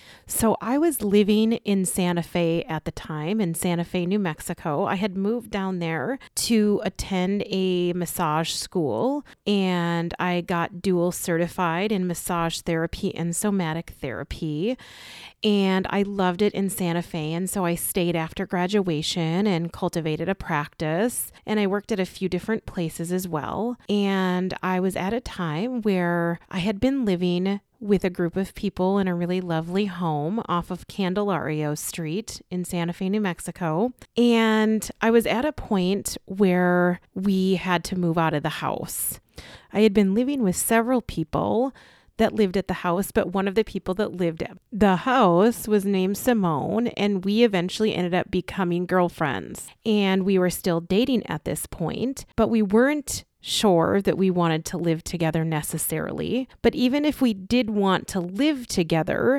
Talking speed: 170 wpm